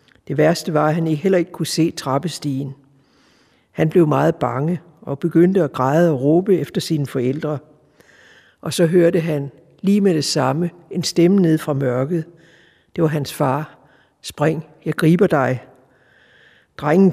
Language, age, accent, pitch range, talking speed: Danish, 60-79, native, 150-180 Hz, 160 wpm